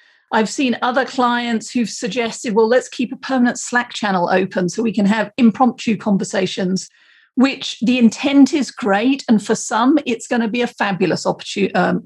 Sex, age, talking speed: female, 40-59, 175 wpm